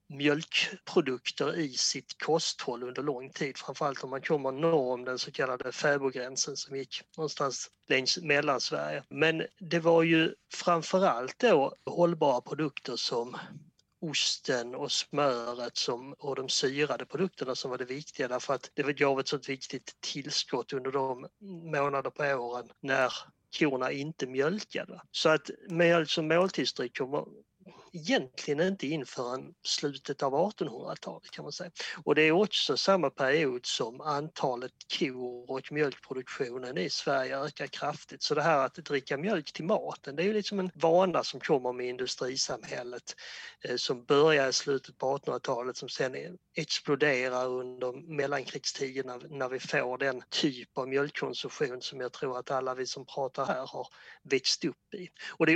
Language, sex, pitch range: Swedish, male, 130-165 Hz